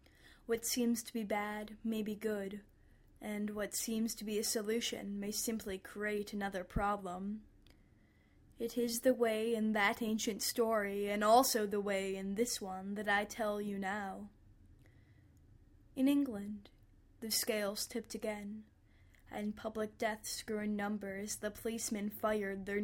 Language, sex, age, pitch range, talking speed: English, female, 10-29, 195-225 Hz, 145 wpm